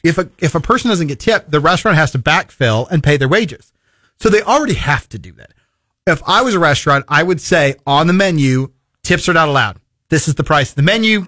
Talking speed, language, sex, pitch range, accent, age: 245 wpm, English, male, 130-175 Hz, American, 30-49